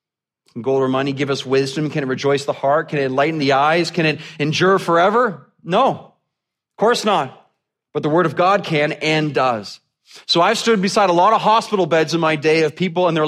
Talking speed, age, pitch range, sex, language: 215 wpm, 30-49, 110-155 Hz, male, English